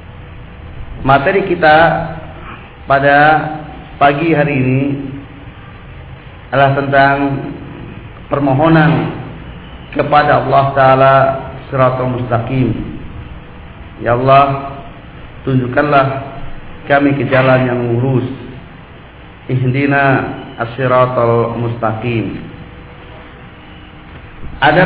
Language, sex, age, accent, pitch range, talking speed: Indonesian, male, 40-59, native, 130-155 Hz, 65 wpm